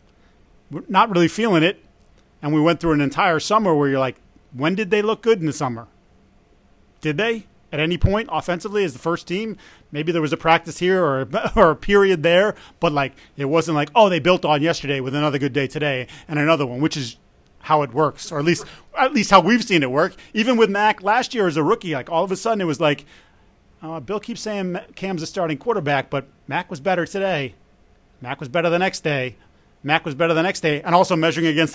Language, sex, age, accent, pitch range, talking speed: English, male, 30-49, American, 140-180 Hz, 230 wpm